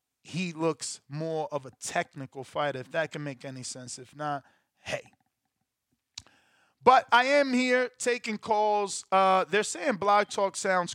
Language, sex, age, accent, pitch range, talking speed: English, male, 20-39, American, 140-200 Hz, 155 wpm